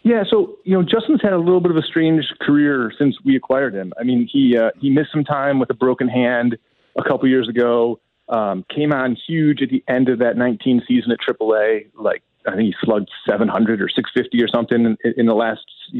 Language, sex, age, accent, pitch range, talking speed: English, male, 30-49, American, 120-150 Hz, 235 wpm